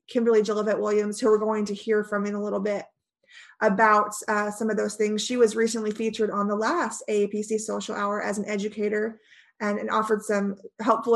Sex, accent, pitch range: female, American, 210-240 Hz